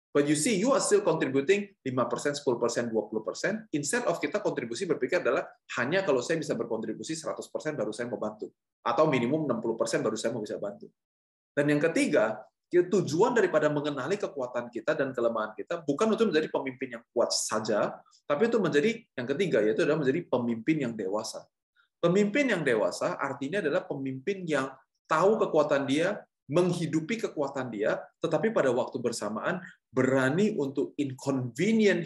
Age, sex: 20-39, male